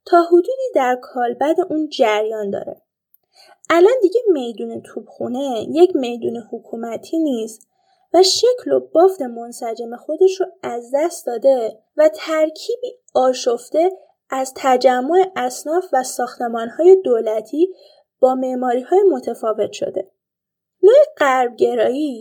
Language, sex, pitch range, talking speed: Persian, female, 240-345 Hz, 110 wpm